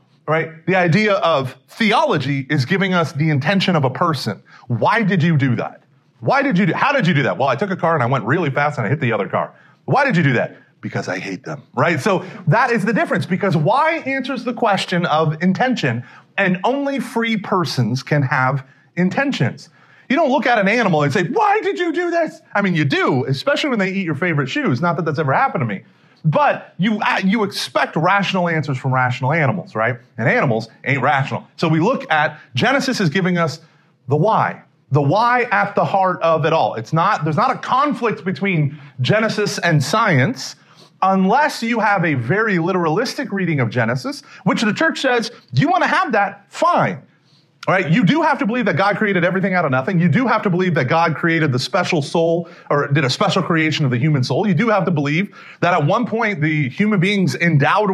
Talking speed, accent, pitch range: 220 wpm, American, 145-205 Hz